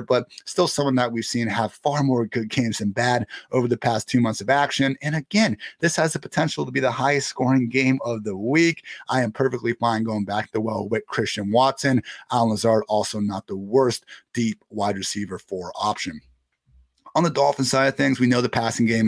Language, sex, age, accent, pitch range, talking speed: English, male, 30-49, American, 110-130 Hz, 215 wpm